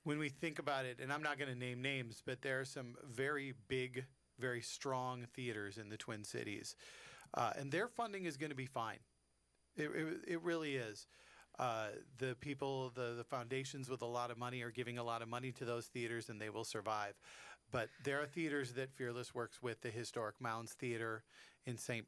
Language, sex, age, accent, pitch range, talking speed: English, male, 40-59, American, 115-135 Hz, 210 wpm